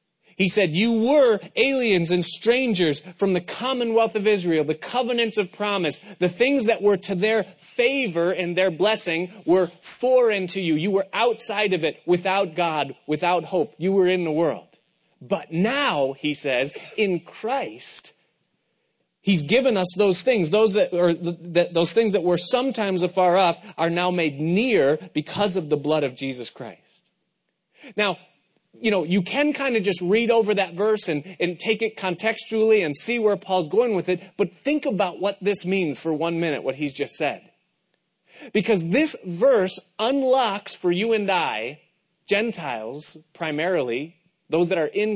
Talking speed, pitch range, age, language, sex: 165 wpm, 170-215 Hz, 30-49, English, male